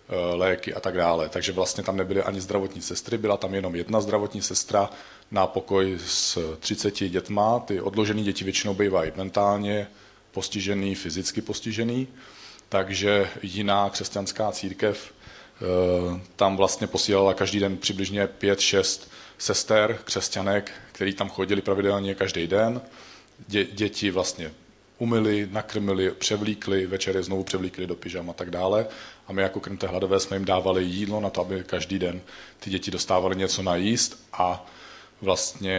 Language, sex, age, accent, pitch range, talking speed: Czech, male, 40-59, native, 95-105 Hz, 145 wpm